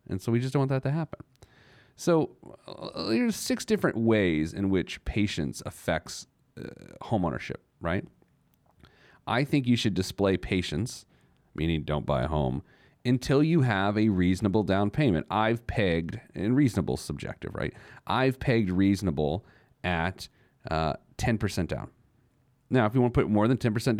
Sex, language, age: male, English, 40-59